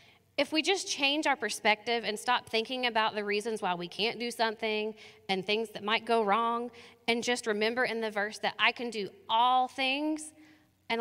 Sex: female